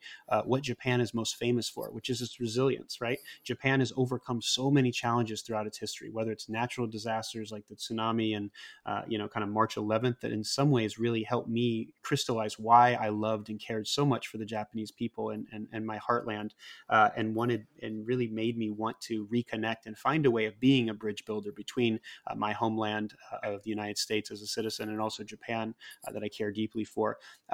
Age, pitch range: 30-49, 110-125 Hz